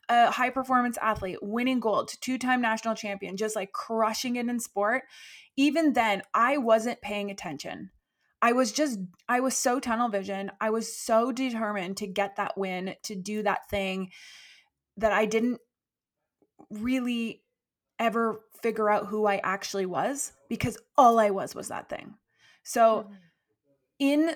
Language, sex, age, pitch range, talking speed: English, female, 20-39, 200-245 Hz, 155 wpm